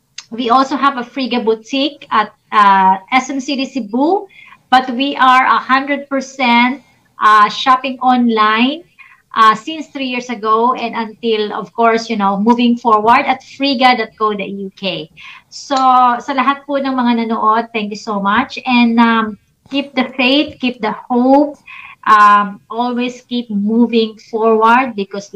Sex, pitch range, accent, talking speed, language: female, 200-255 Hz, Filipino, 140 wpm, English